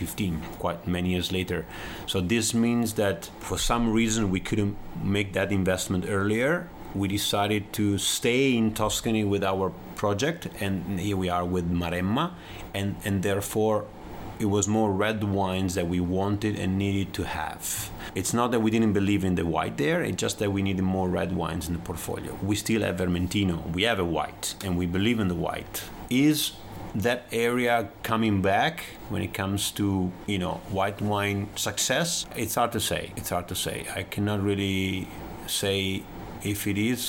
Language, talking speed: English, 180 wpm